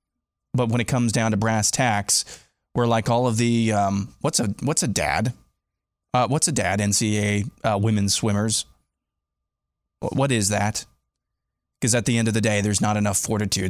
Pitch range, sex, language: 105-120 Hz, male, English